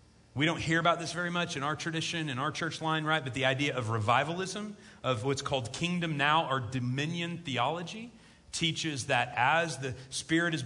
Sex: male